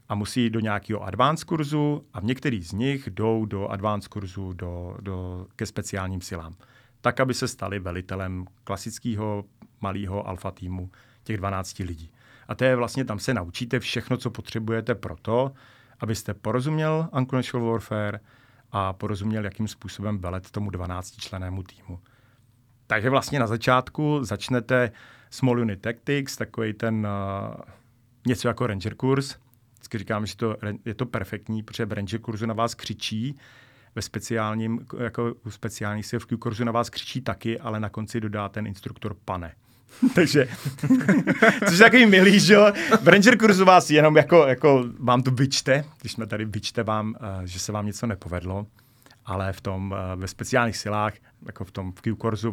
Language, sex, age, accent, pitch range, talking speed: Czech, male, 40-59, native, 100-125 Hz, 155 wpm